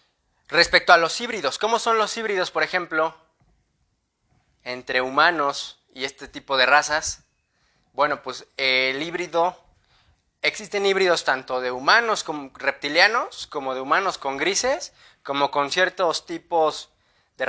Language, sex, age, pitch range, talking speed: English, male, 20-39, 140-175 Hz, 130 wpm